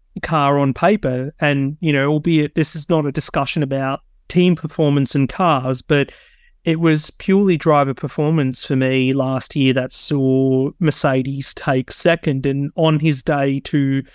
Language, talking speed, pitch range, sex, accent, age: English, 155 wpm, 140-160 Hz, male, Australian, 30-49